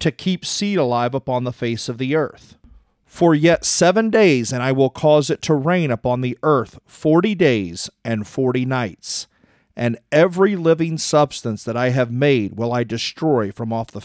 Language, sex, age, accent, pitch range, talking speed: English, male, 40-59, American, 115-160 Hz, 185 wpm